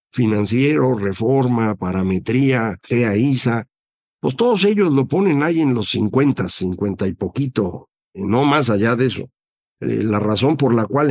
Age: 50-69